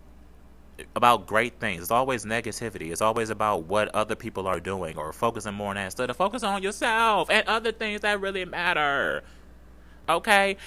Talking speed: 180 wpm